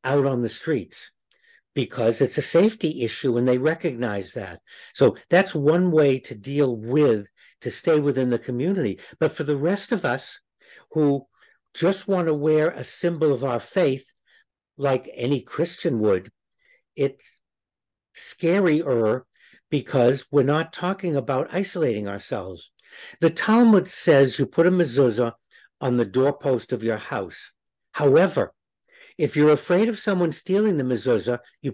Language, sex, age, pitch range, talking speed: English, male, 60-79, 130-175 Hz, 145 wpm